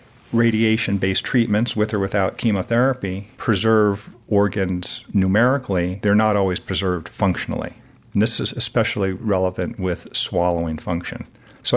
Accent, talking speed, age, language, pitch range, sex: American, 115 wpm, 50-69, English, 95-120 Hz, male